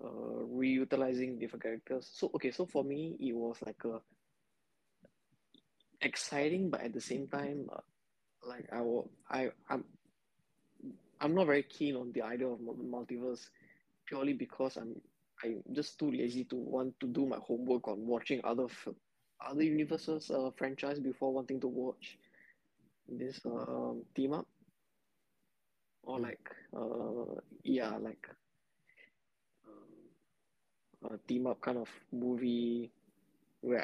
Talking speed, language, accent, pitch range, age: 130 wpm, English, Indian, 120-145 Hz, 20-39